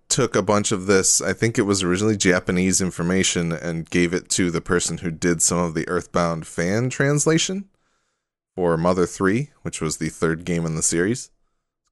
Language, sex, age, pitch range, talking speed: English, male, 20-39, 85-105 Hz, 190 wpm